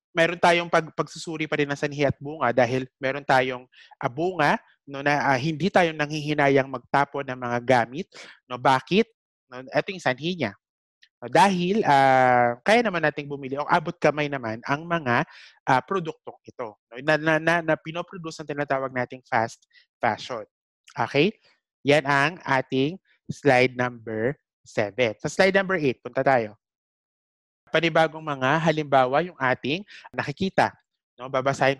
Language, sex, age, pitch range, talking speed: English, male, 30-49, 130-160 Hz, 155 wpm